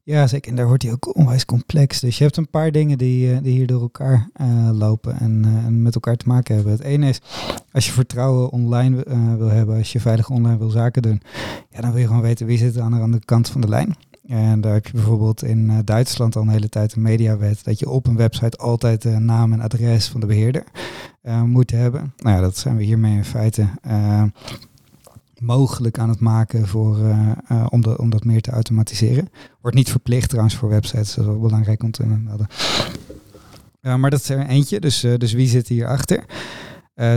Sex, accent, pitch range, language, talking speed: male, Dutch, 110-130 Hz, Dutch, 225 wpm